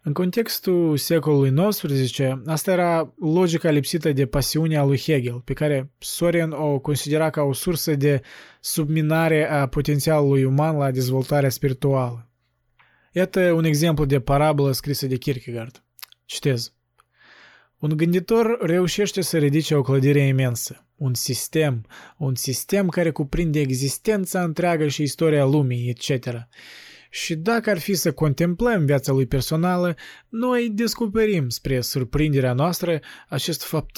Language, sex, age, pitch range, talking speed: Romanian, male, 20-39, 135-175 Hz, 130 wpm